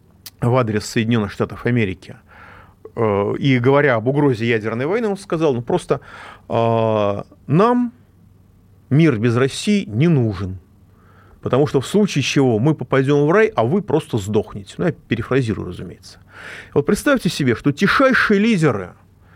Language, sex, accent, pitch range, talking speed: Russian, male, native, 100-155 Hz, 145 wpm